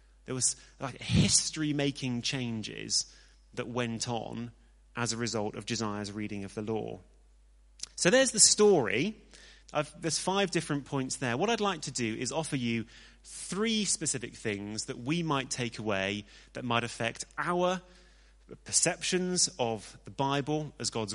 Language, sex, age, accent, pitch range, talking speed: English, male, 30-49, British, 115-160 Hz, 150 wpm